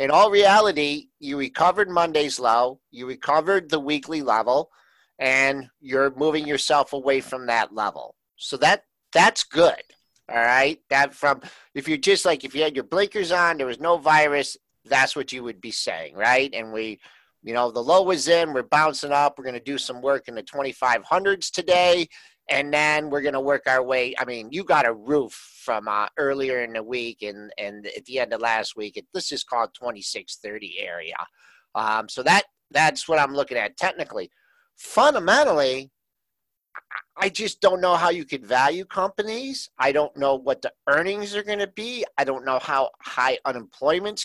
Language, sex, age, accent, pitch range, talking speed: English, male, 50-69, American, 130-190 Hz, 190 wpm